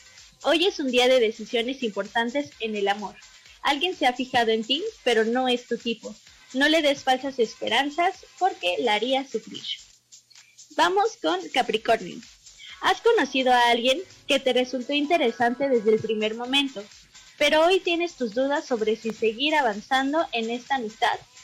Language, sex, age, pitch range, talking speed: Spanish, female, 20-39, 230-290 Hz, 160 wpm